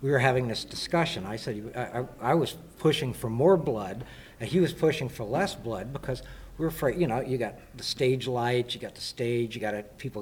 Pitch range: 110-145 Hz